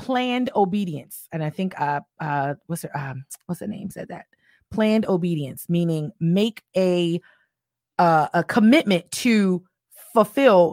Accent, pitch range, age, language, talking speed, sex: American, 175-220 Hz, 30-49, English, 140 wpm, female